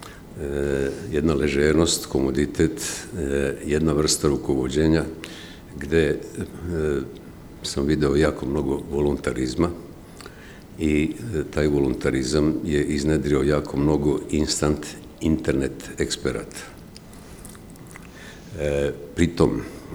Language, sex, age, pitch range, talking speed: Croatian, male, 60-79, 70-80 Hz, 85 wpm